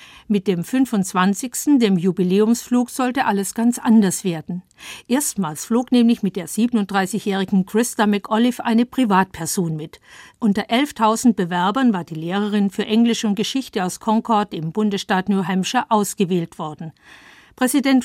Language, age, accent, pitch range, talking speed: German, 50-69, German, 190-235 Hz, 135 wpm